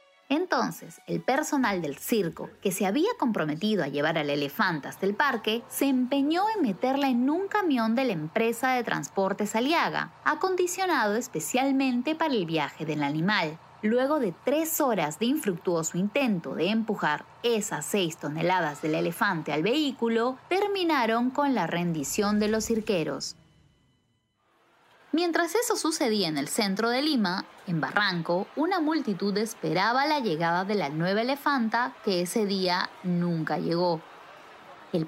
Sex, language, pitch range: female, Spanish, 180-280 Hz